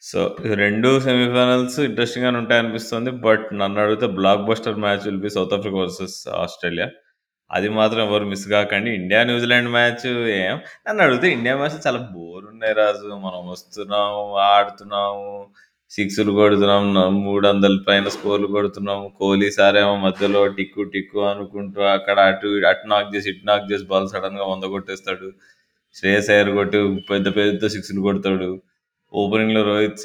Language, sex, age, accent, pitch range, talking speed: Telugu, male, 20-39, native, 95-105 Hz, 140 wpm